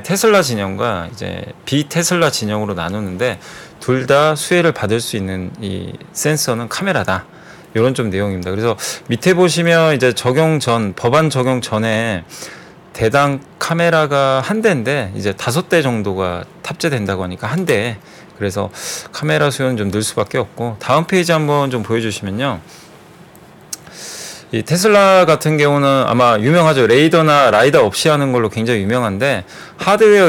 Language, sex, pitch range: Korean, male, 105-160 Hz